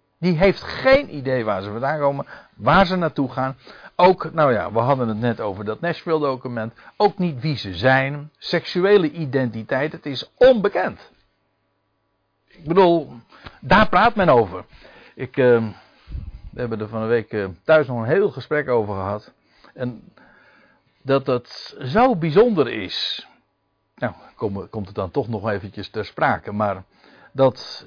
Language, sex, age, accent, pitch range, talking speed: Dutch, male, 60-79, Dutch, 125-190 Hz, 155 wpm